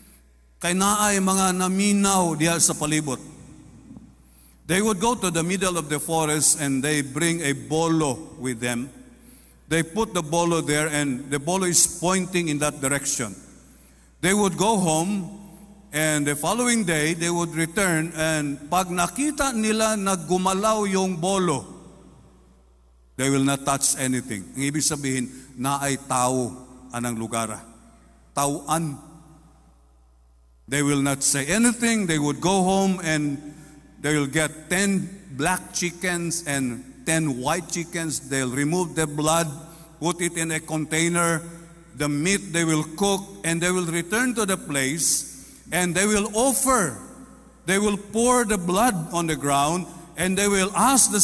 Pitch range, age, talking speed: 145-200 Hz, 50-69, 145 wpm